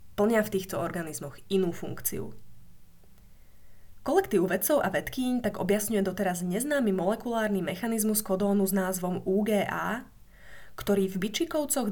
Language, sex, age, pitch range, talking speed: Slovak, female, 20-39, 185-225 Hz, 115 wpm